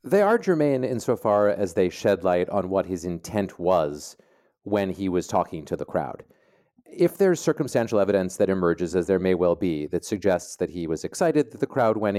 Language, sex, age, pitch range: English, male, 30-49, 95-130 Hz